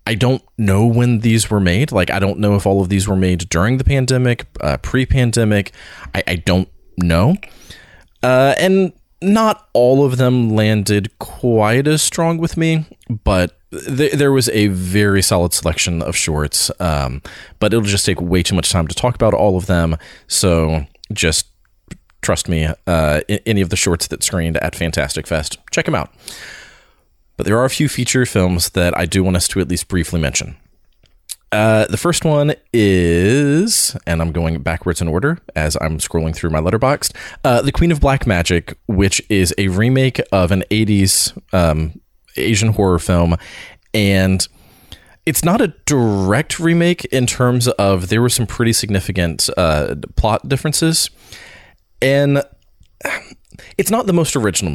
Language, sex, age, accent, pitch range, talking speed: English, male, 30-49, American, 85-125 Hz, 165 wpm